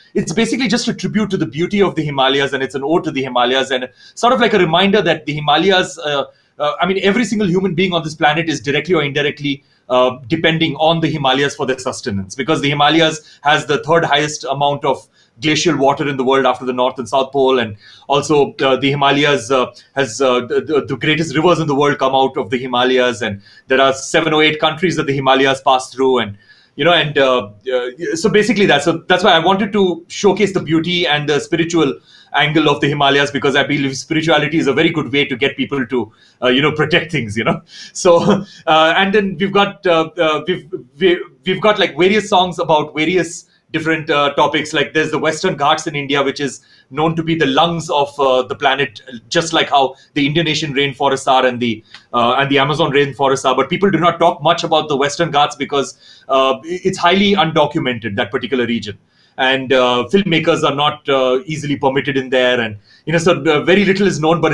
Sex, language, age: male, English, 30-49